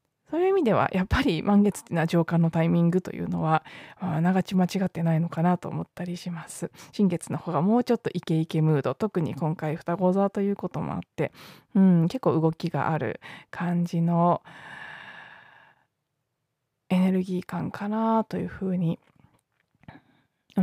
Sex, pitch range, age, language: female, 165-215 Hz, 20-39, Japanese